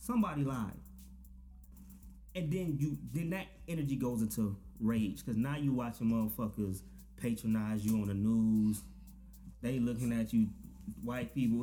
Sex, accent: male, American